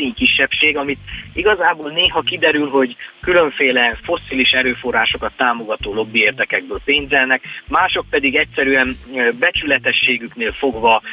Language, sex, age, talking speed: Hungarian, male, 30-49, 95 wpm